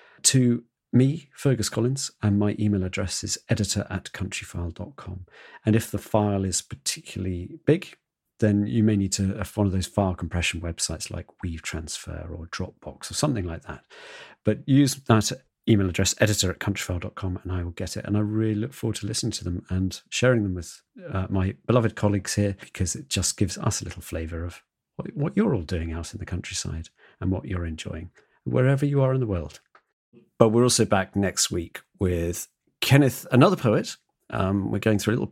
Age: 40-59